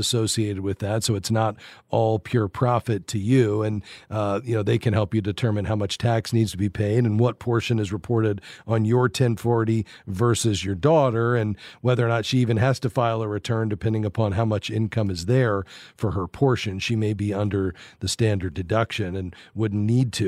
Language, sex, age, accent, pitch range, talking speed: English, male, 40-59, American, 110-140 Hz, 205 wpm